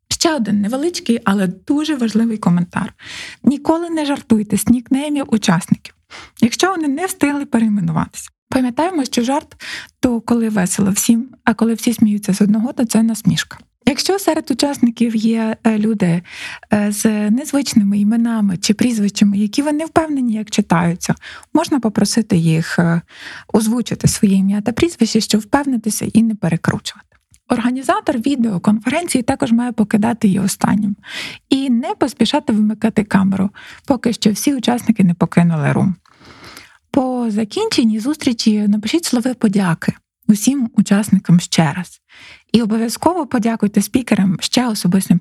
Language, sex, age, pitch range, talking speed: Ukrainian, female, 20-39, 205-255 Hz, 130 wpm